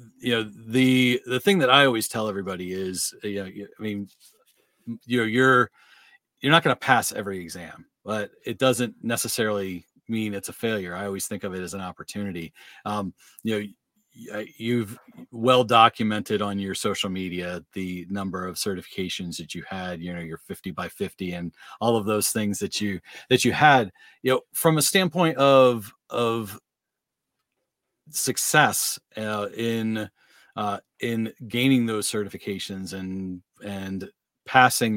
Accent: American